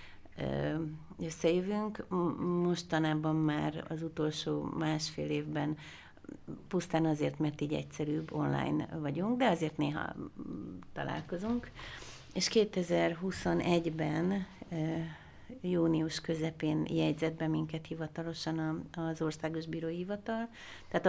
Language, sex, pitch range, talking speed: Hungarian, female, 150-170 Hz, 90 wpm